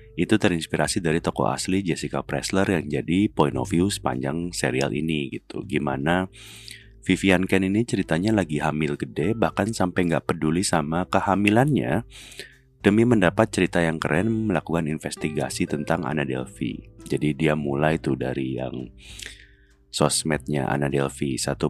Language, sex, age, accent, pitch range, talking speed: Indonesian, male, 30-49, native, 75-95 Hz, 140 wpm